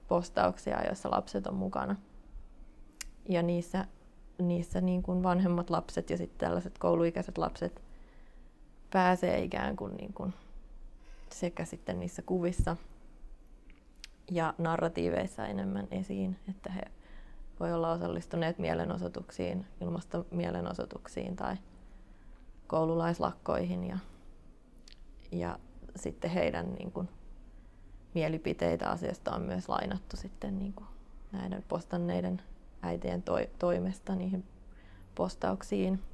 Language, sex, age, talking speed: Finnish, female, 20-39, 100 wpm